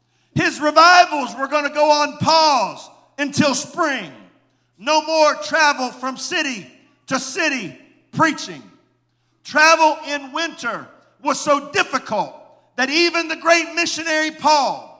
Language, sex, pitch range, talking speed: English, male, 270-315 Hz, 120 wpm